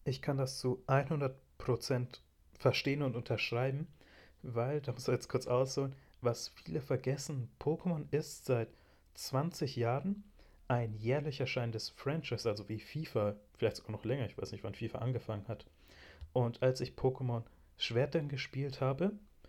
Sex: male